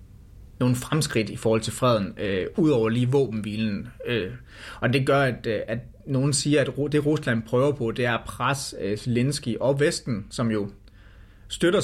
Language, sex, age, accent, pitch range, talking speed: Danish, male, 30-49, native, 115-140 Hz, 170 wpm